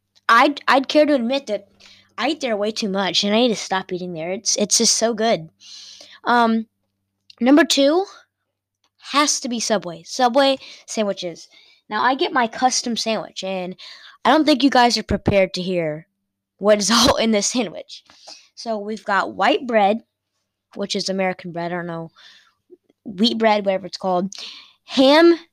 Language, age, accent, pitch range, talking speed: English, 20-39, American, 200-280 Hz, 170 wpm